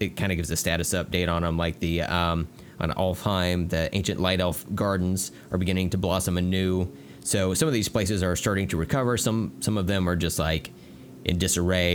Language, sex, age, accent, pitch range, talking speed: English, male, 30-49, American, 85-95 Hz, 210 wpm